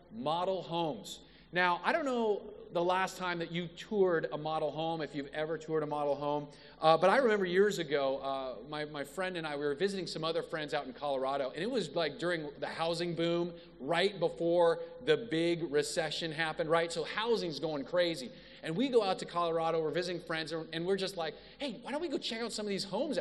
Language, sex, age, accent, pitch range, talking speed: English, male, 40-59, American, 165-245 Hz, 220 wpm